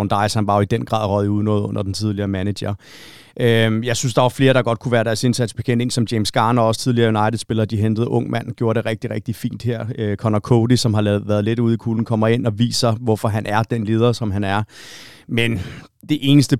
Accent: native